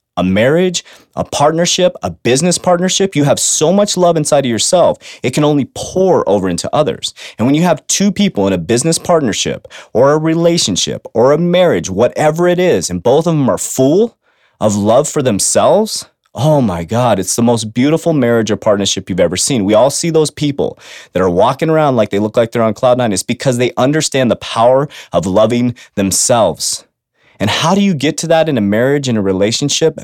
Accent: American